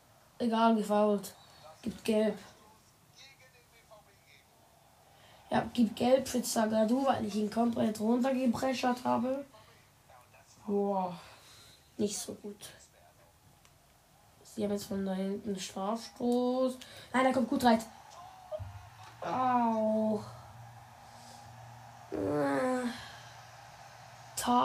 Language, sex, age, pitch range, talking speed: German, female, 10-29, 200-245 Hz, 80 wpm